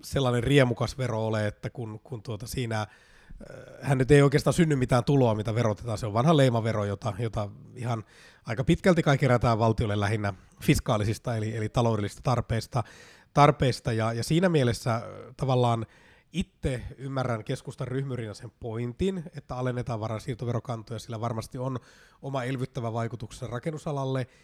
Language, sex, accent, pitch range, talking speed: Finnish, male, native, 110-135 Hz, 140 wpm